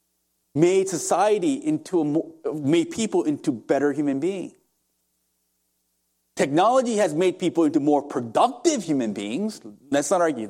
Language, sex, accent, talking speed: English, male, American, 130 wpm